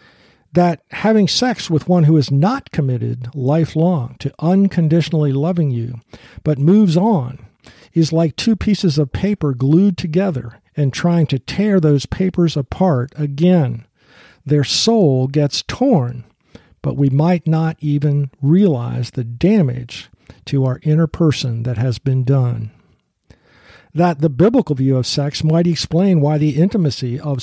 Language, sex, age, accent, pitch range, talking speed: English, male, 50-69, American, 130-170 Hz, 140 wpm